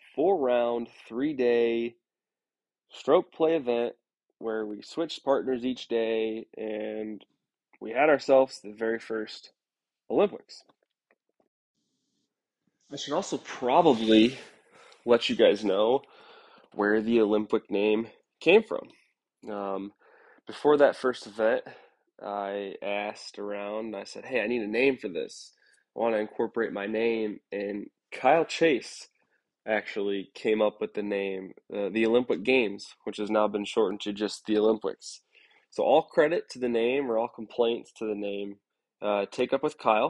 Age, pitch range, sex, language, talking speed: 20-39, 105-120 Hz, male, English, 140 wpm